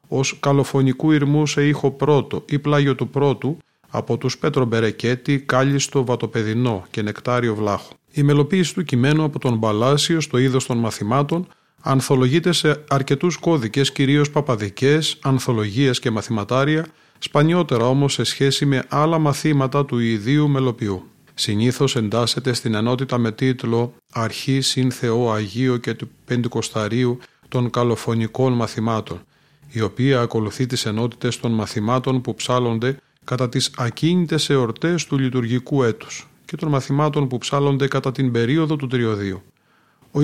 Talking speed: 135 wpm